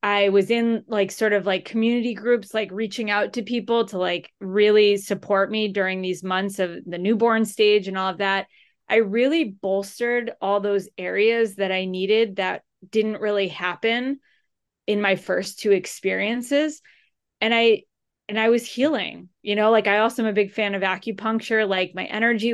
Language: English